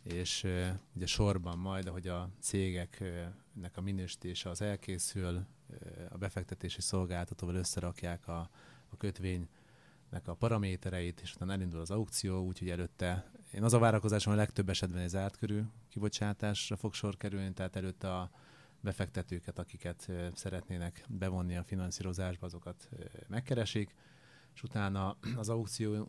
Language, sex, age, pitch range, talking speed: Hungarian, male, 30-49, 90-105 Hz, 140 wpm